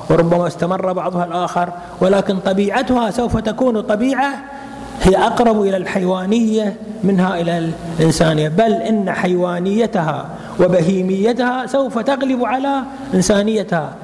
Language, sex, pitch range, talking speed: Arabic, male, 170-225 Hz, 105 wpm